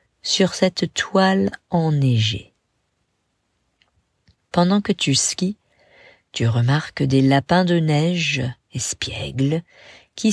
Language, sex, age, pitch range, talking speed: English, female, 40-59, 140-210 Hz, 95 wpm